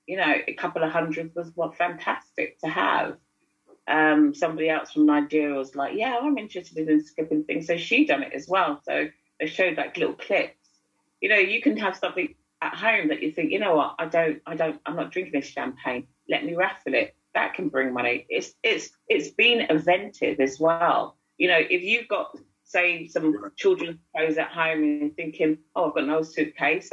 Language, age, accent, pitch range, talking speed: English, 40-59, British, 145-175 Hz, 210 wpm